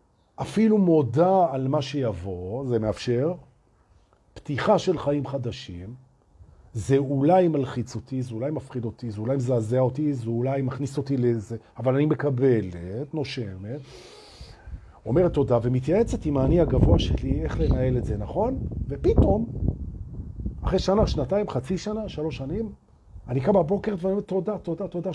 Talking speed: 120 wpm